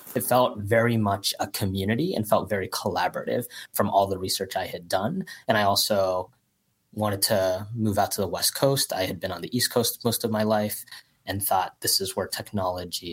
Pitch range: 90-110 Hz